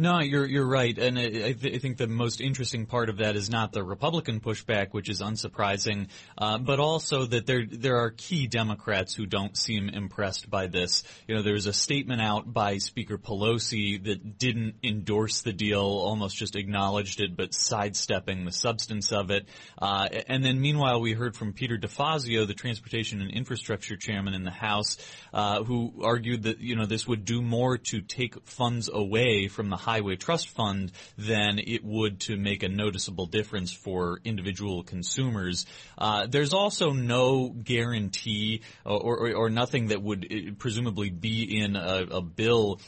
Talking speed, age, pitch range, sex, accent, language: 180 wpm, 30-49, 100-120 Hz, male, American, English